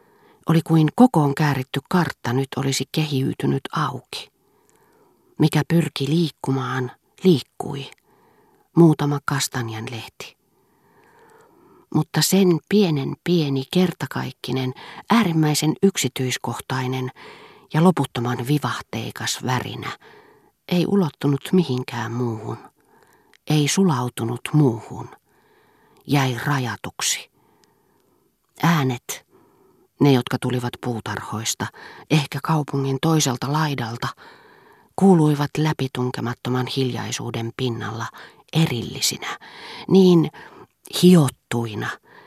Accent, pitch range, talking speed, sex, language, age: native, 125-170 Hz, 70 wpm, female, Finnish, 40-59